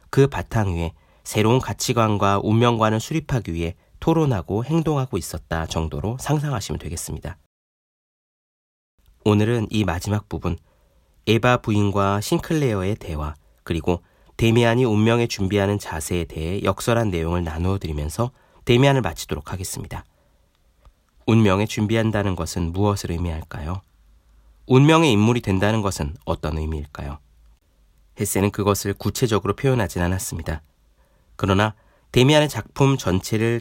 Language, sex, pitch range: Korean, male, 75-110 Hz